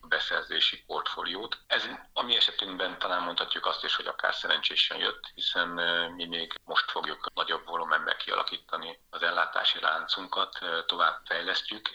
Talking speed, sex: 130 wpm, male